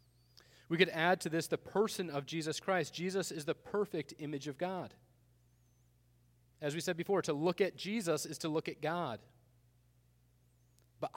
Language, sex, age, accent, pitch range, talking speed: English, male, 30-49, American, 120-160 Hz, 165 wpm